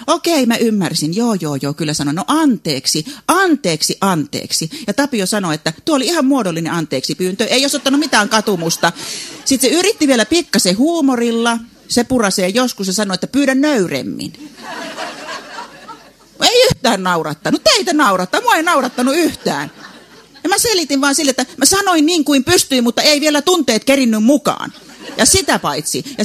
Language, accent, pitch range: Finnish, native, 185-280 Hz